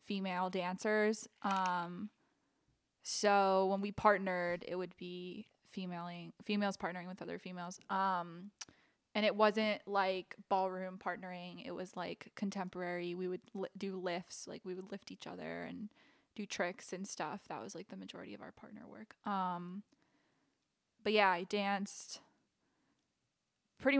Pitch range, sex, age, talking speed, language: 185-220 Hz, female, 20-39, 145 wpm, English